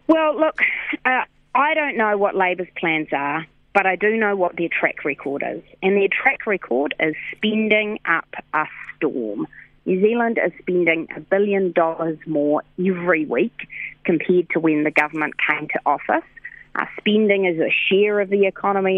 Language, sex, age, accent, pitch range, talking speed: English, female, 30-49, Australian, 165-210 Hz, 170 wpm